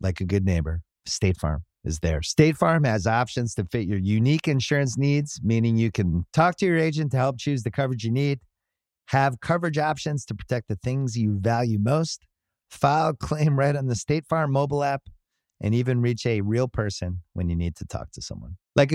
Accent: American